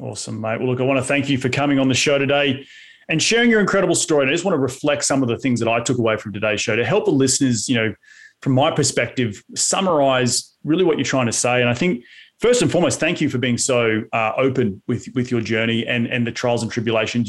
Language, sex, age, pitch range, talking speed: English, male, 30-49, 115-130 Hz, 265 wpm